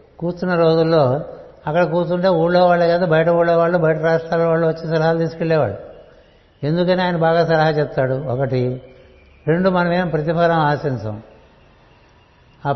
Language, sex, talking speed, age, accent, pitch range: Telugu, male, 130 wpm, 60-79, native, 145-175 Hz